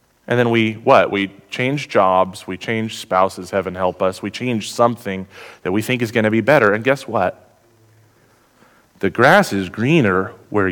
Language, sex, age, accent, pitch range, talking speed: English, male, 30-49, American, 100-125 Hz, 180 wpm